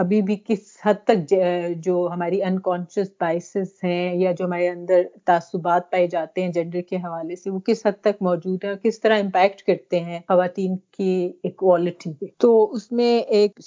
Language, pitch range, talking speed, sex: Urdu, 190-220 Hz, 180 wpm, female